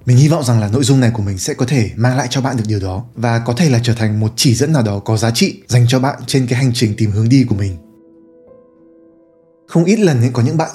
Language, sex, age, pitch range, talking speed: Vietnamese, male, 20-39, 110-145 Hz, 295 wpm